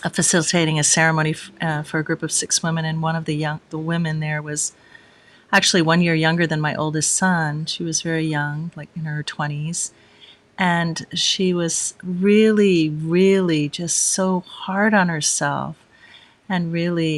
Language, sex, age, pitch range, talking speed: English, female, 40-59, 160-205 Hz, 170 wpm